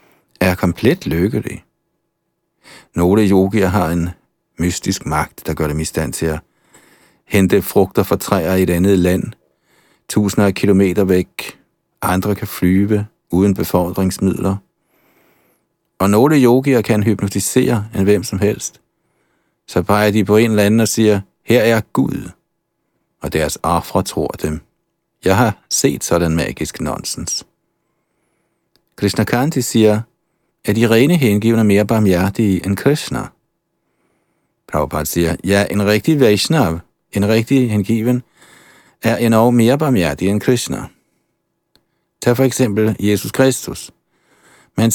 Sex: male